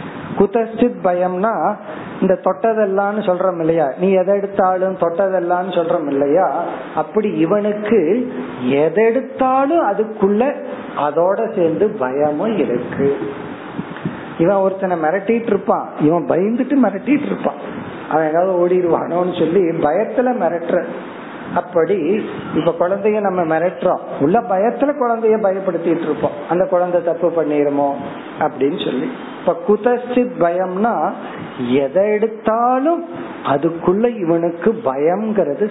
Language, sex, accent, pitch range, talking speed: Tamil, male, native, 170-220 Hz, 70 wpm